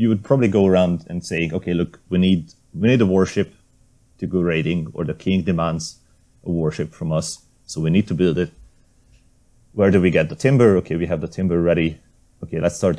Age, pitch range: 30-49, 80-100 Hz